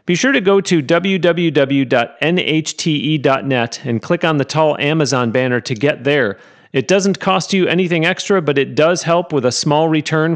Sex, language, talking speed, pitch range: male, English, 175 wpm, 135-170 Hz